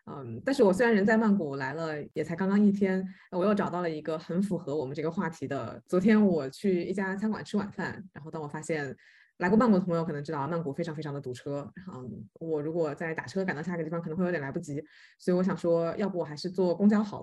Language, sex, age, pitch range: Chinese, female, 20-39, 160-200 Hz